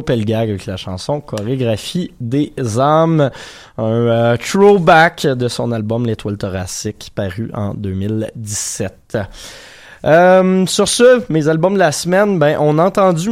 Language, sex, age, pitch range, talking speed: French, male, 20-39, 115-160 Hz, 135 wpm